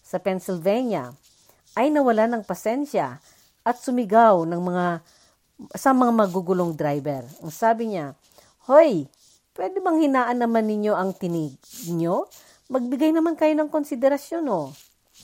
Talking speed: 125 wpm